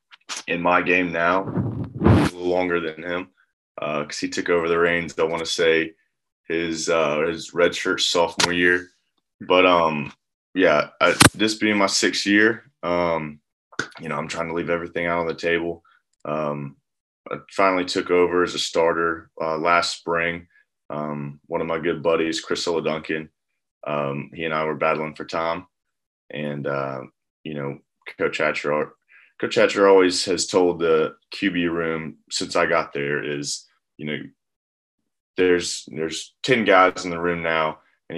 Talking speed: 160 wpm